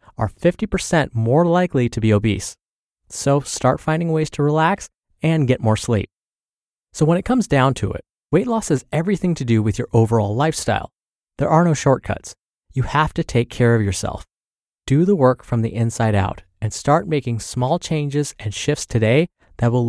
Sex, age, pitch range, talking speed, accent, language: male, 30-49, 105-150 Hz, 185 wpm, American, English